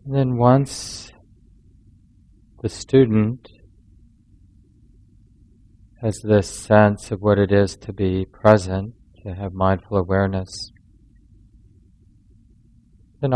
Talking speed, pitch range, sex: 90 wpm, 100-110 Hz, male